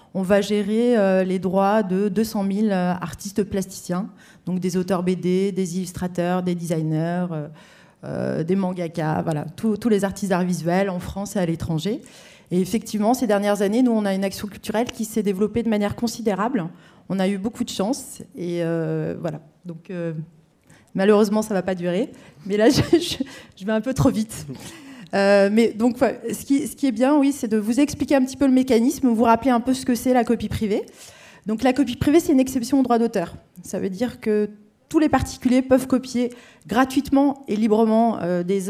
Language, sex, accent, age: French, female, French, 30-49